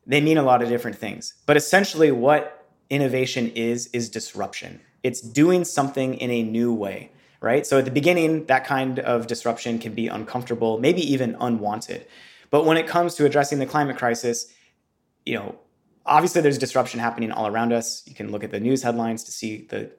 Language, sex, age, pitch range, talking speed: English, male, 20-39, 115-150 Hz, 190 wpm